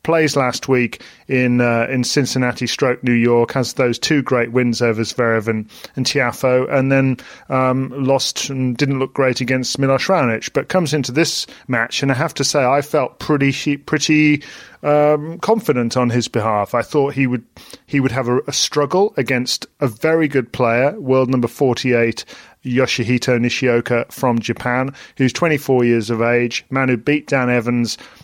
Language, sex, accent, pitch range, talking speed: English, male, British, 120-145 Hz, 175 wpm